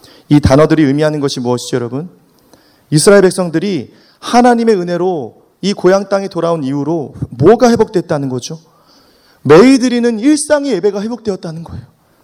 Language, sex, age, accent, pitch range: Korean, male, 30-49, native, 170-225 Hz